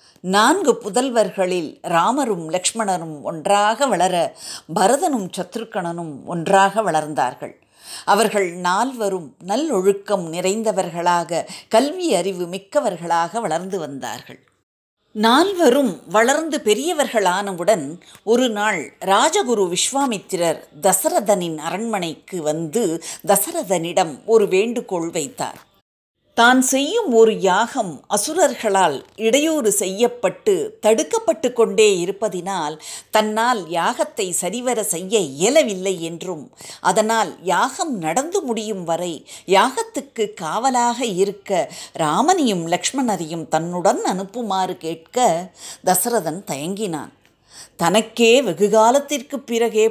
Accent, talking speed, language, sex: native, 80 wpm, Tamil, female